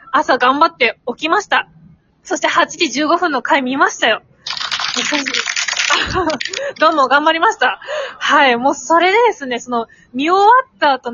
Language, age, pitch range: Japanese, 20-39, 275-375 Hz